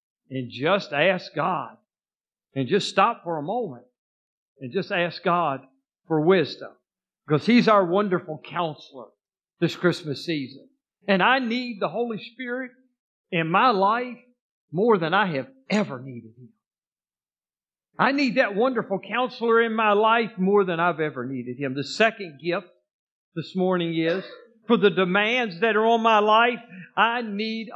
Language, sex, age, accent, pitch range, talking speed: English, male, 50-69, American, 170-230 Hz, 150 wpm